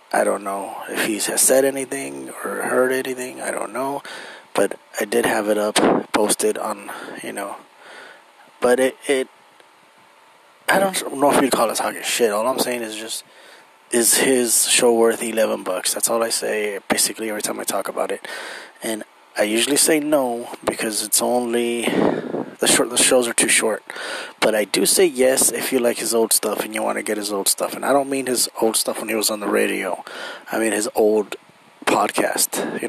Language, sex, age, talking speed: English, male, 20-39, 205 wpm